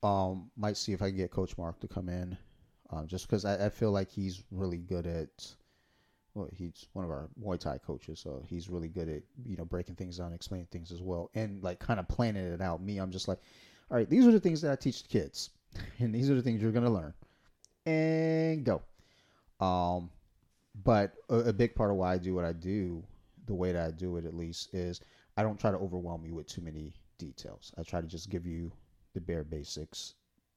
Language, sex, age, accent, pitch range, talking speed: English, male, 30-49, American, 85-105 Hz, 235 wpm